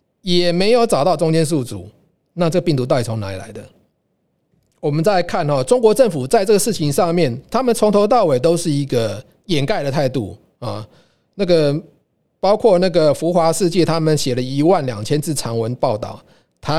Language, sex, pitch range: Chinese, male, 130-190 Hz